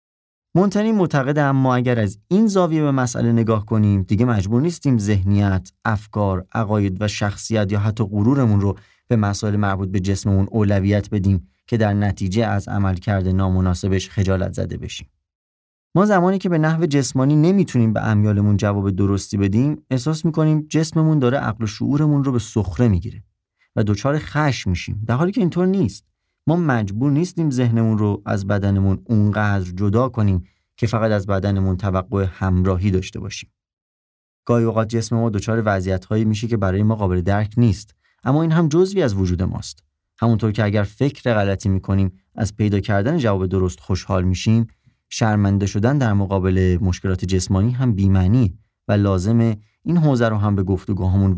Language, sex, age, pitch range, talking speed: Persian, male, 30-49, 95-120 Hz, 160 wpm